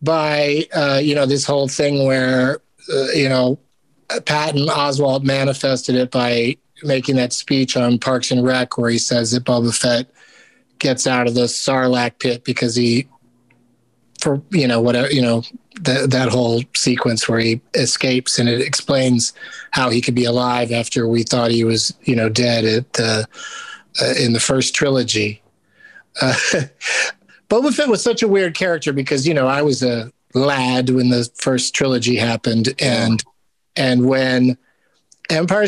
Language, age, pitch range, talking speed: English, 30-49, 120-145 Hz, 165 wpm